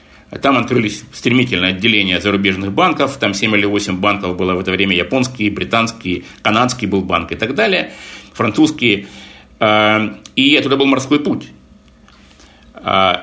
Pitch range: 95-120 Hz